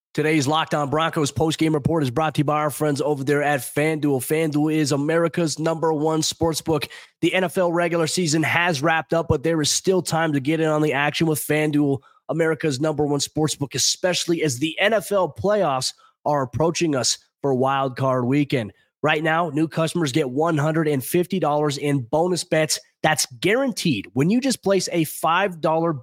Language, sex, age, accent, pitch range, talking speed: English, male, 20-39, American, 145-175 Hz, 175 wpm